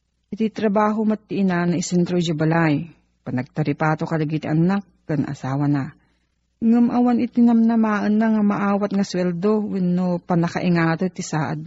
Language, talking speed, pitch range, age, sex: Filipino, 125 wpm, 160-210 Hz, 40-59, female